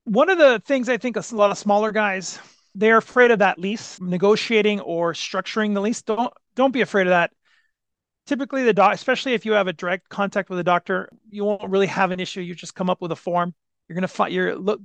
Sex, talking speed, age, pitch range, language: male, 240 wpm, 40-59, 175-210 Hz, English